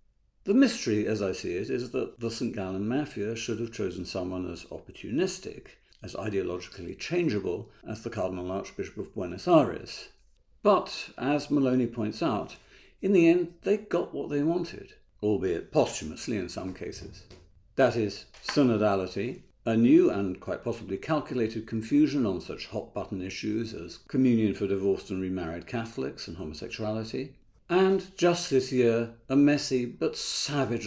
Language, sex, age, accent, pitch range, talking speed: English, male, 50-69, British, 100-145 Hz, 150 wpm